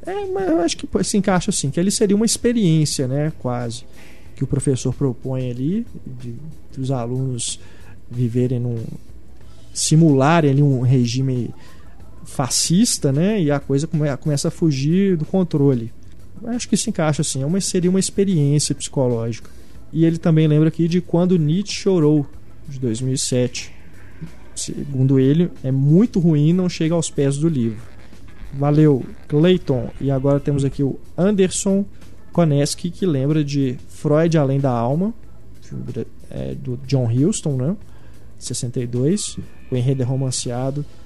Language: Portuguese